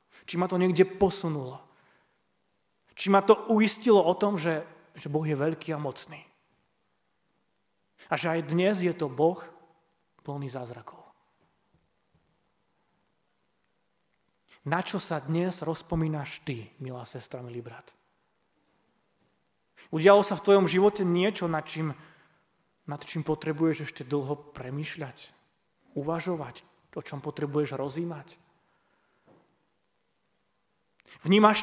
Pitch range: 145-180 Hz